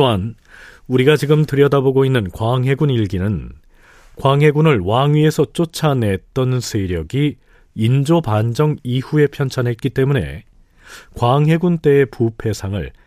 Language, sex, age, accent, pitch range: Korean, male, 40-59, native, 100-145 Hz